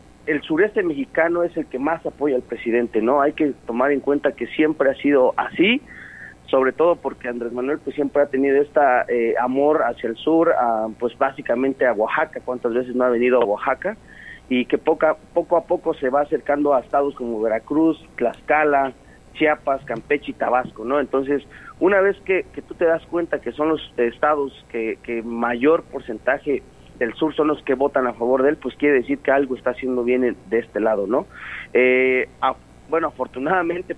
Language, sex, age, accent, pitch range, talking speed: Spanish, male, 40-59, Mexican, 125-155 Hz, 195 wpm